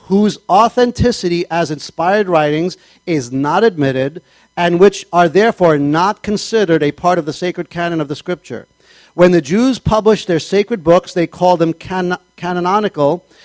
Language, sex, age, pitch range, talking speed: English, male, 50-69, 160-205 Hz, 150 wpm